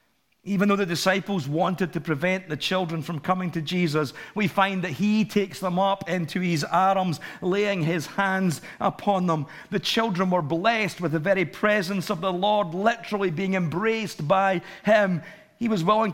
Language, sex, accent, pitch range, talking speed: English, male, British, 165-195 Hz, 175 wpm